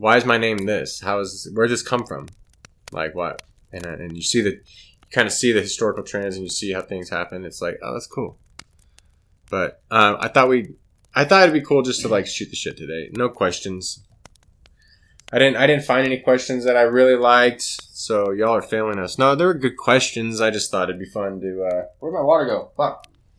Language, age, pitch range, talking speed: English, 20-39, 95-125 Hz, 230 wpm